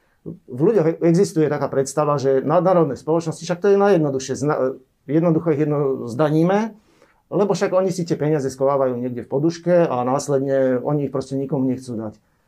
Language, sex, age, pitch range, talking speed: Slovak, male, 40-59, 135-160 Hz, 160 wpm